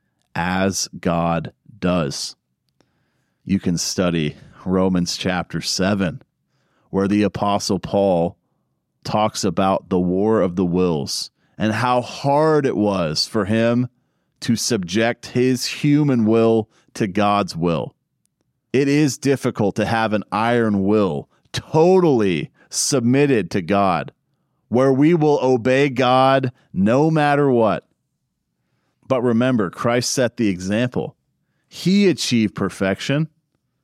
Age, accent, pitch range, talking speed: 40-59, American, 100-130 Hz, 115 wpm